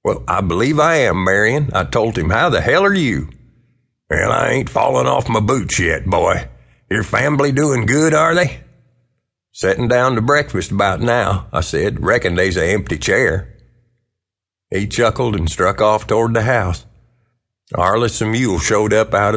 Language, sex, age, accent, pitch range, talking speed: English, male, 50-69, American, 95-120 Hz, 175 wpm